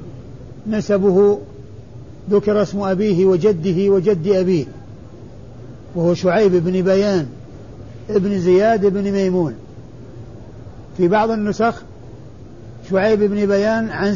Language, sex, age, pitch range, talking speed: Arabic, male, 50-69, 120-200 Hz, 95 wpm